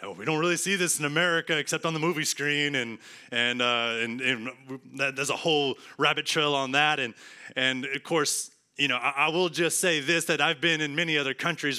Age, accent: 30-49, American